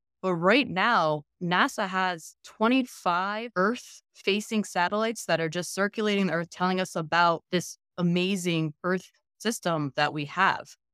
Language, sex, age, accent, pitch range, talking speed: English, female, 20-39, American, 155-190 Hz, 130 wpm